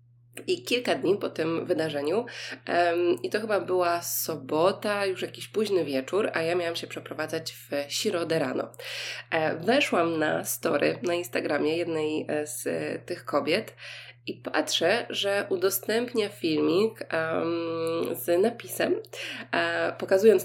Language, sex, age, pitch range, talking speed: Polish, female, 20-39, 155-190 Hz, 130 wpm